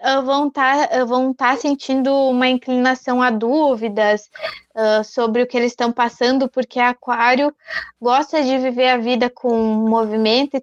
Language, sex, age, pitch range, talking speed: Portuguese, female, 20-39, 230-270 Hz, 160 wpm